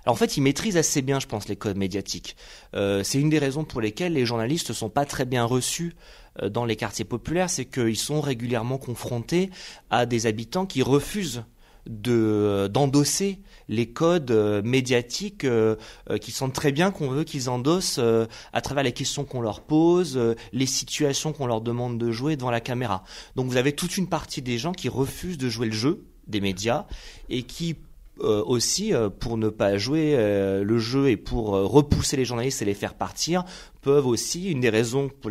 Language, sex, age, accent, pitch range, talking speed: French, male, 30-49, French, 110-150 Hz, 190 wpm